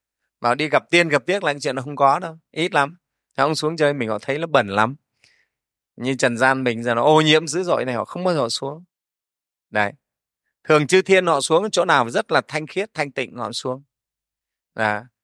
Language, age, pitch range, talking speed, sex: Vietnamese, 20-39, 135-180 Hz, 225 wpm, male